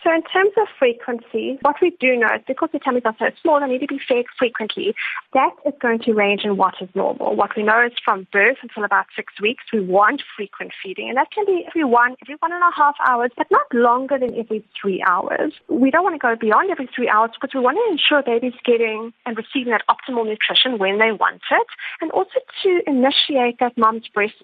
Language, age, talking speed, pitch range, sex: English, 30-49, 235 wpm, 215-285 Hz, female